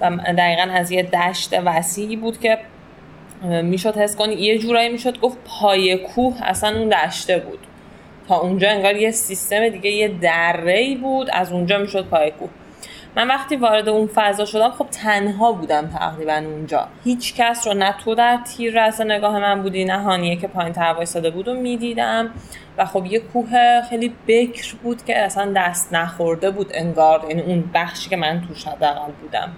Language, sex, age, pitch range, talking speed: Persian, female, 10-29, 175-220 Hz, 170 wpm